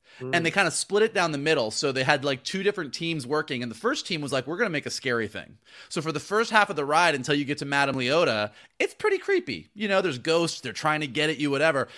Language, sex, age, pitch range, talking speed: English, male, 30-49, 125-180 Hz, 290 wpm